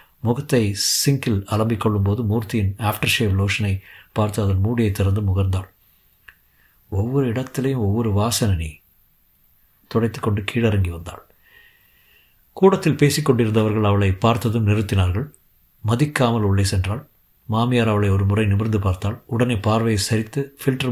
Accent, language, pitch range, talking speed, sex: native, Tamil, 100-130 Hz, 110 wpm, male